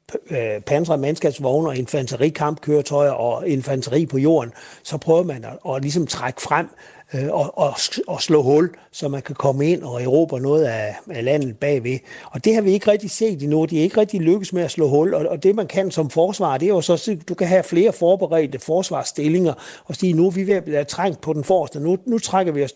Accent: native